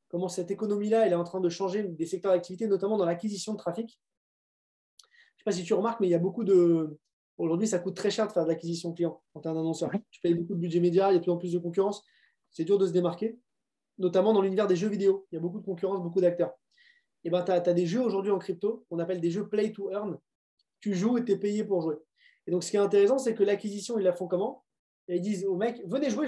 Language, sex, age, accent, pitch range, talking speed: French, male, 20-39, French, 180-230 Hz, 280 wpm